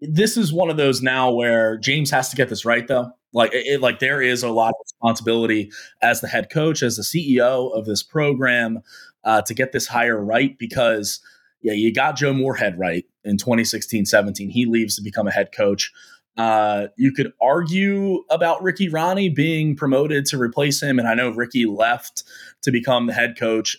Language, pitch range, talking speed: English, 110-135 Hz, 195 wpm